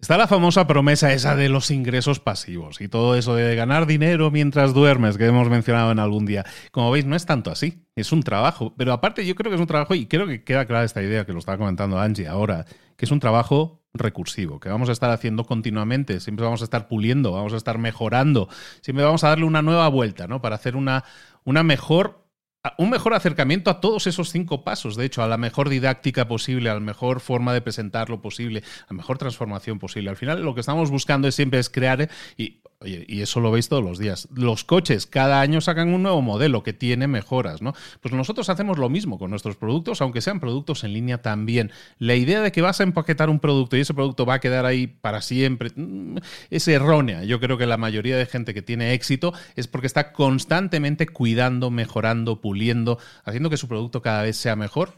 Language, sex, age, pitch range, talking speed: Spanish, male, 30-49, 115-150 Hz, 225 wpm